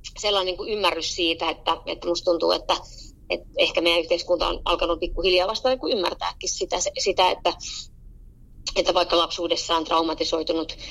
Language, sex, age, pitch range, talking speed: Finnish, female, 30-49, 170-190 Hz, 150 wpm